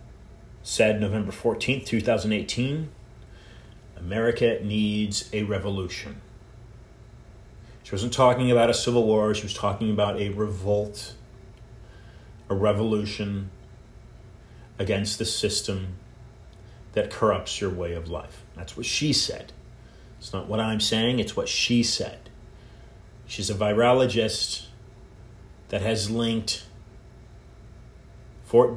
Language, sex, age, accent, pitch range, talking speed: English, male, 40-59, American, 100-115 Hz, 110 wpm